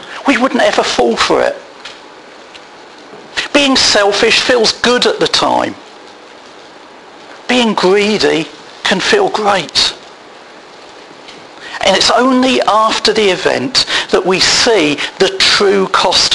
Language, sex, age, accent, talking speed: English, male, 50-69, British, 110 wpm